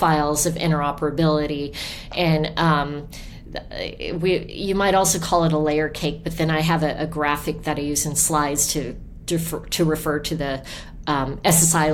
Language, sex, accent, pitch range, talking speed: English, female, American, 150-170 Hz, 175 wpm